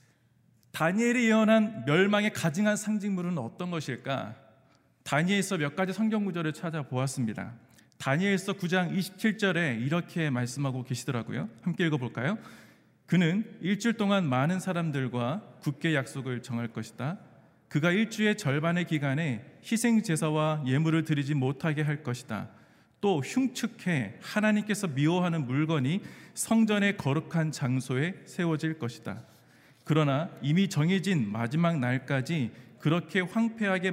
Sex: male